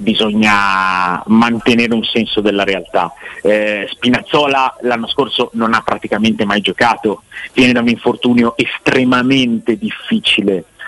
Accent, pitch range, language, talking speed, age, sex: native, 110-145 Hz, Italian, 115 wpm, 30-49, male